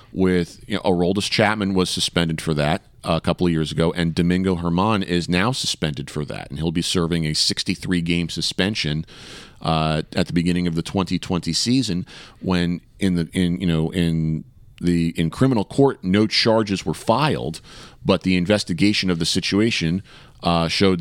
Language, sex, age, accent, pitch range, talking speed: English, male, 40-59, American, 85-105 Hz, 175 wpm